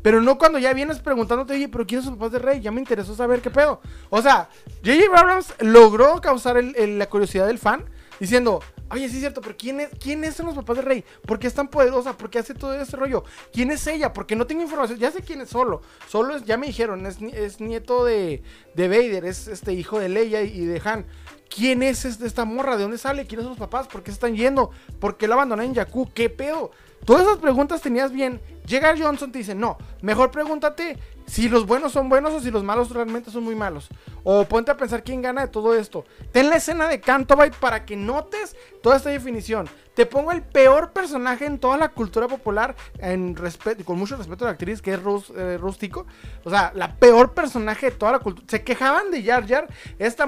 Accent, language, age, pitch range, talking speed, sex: Mexican, Spanish, 20-39, 220-280 Hz, 230 wpm, male